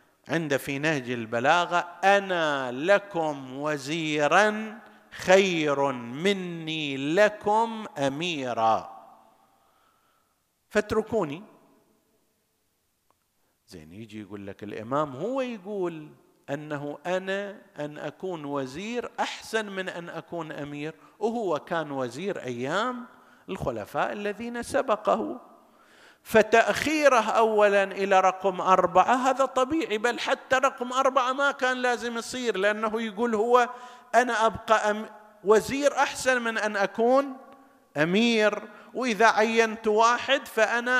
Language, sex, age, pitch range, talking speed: Arabic, male, 50-69, 150-230 Hz, 95 wpm